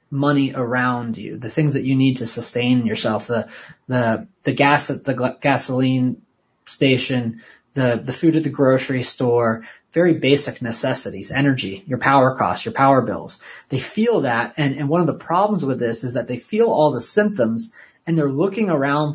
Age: 30-49